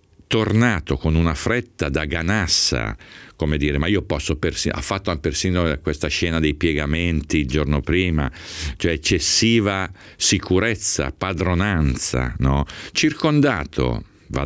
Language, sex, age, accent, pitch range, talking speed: Italian, male, 50-69, native, 70-95 Hz, 120 wpm